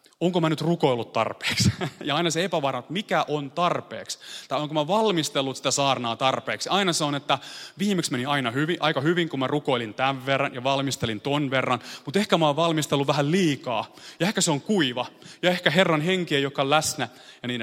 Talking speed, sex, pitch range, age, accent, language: 200 wpm, male, 125-160 Hz, 30-49, native, Finnish